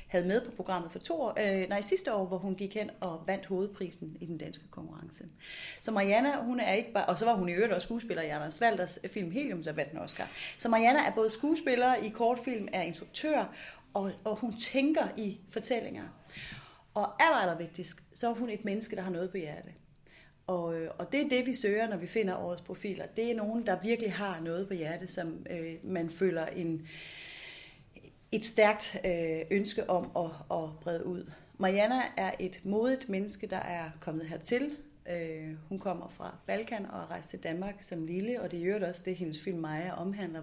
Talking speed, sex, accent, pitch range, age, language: 200 wpm, female, native, 175-225 Hz, 30-49, Danish